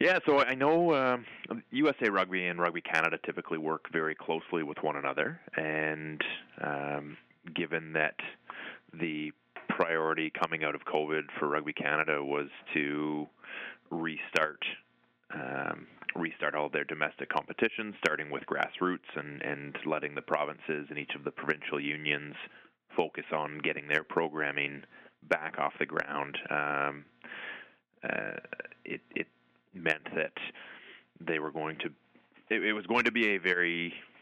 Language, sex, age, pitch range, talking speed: English, male, 30-49, 75-85 Hz, 140 wpm